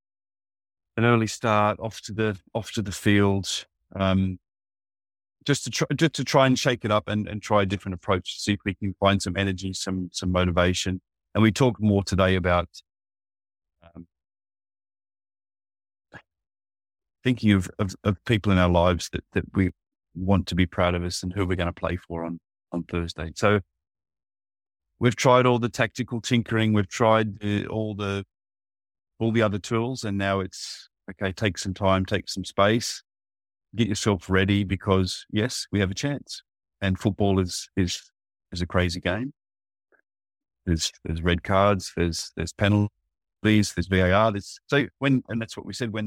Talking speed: 170 wpm